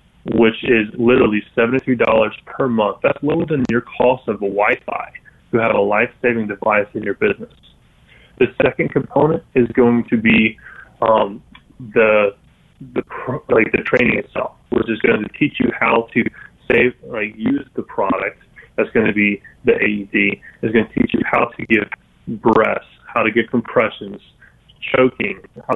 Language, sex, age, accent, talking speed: English, male, 20-39, American, 165 wpm